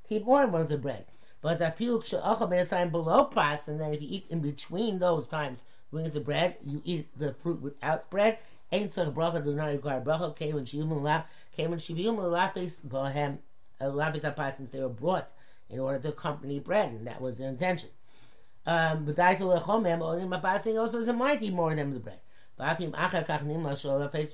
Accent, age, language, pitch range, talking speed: American, 50-69, English, 145-180 Hz, 215 wpm